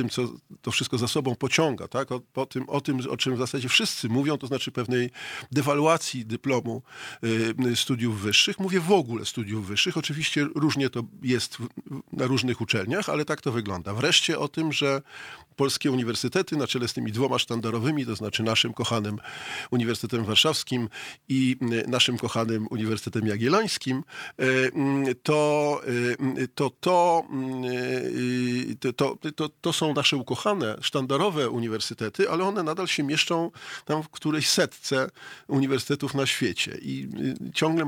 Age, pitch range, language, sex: 40-59, 115-140 Hz, Polish, male